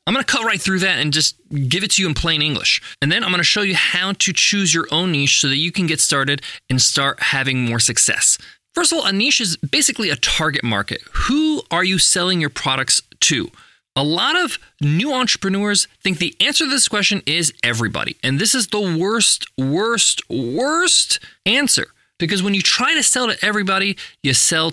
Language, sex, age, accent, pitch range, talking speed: English, male, 20-39, American, 145-225 Hz, 210 wpm